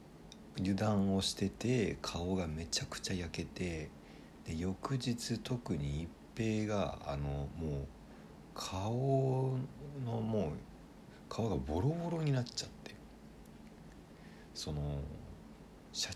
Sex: male